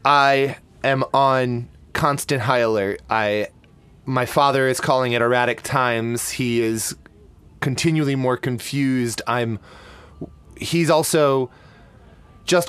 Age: 20-39